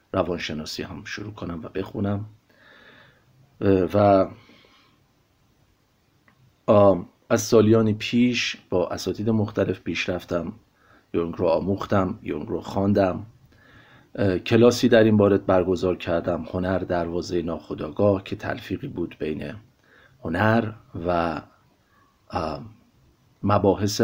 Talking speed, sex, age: 90 wpm, male, 40-59